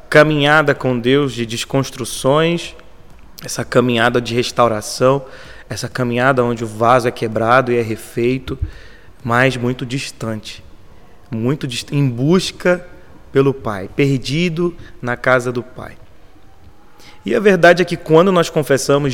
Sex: male